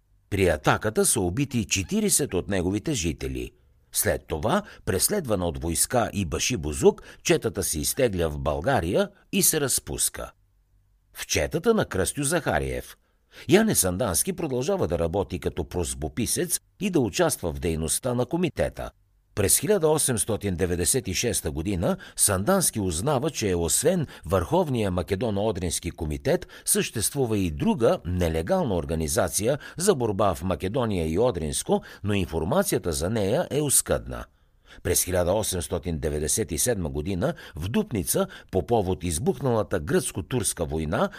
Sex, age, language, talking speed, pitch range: male, 60-79, Bulgarian, 115 wpm, 85-125 Hz